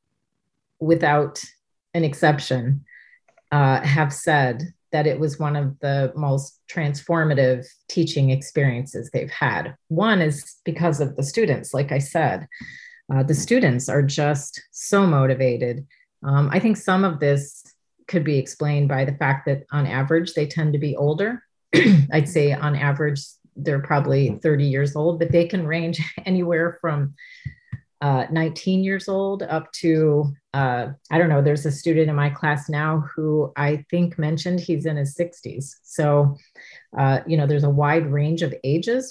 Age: 30-49